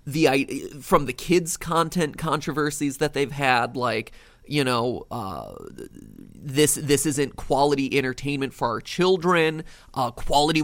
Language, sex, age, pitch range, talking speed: English, male, 30-49, 135-170 Hz, 130 wpm